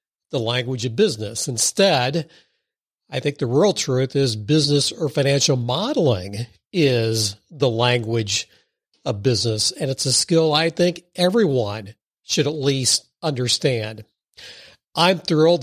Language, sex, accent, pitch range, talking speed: English, male, American, 125-155 Hz, 125 wpm